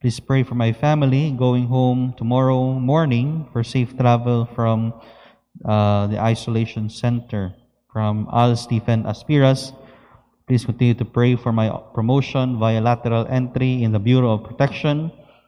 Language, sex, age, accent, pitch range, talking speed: English, male, 20-39, Filipino, 115-130 Hz, 140 wpm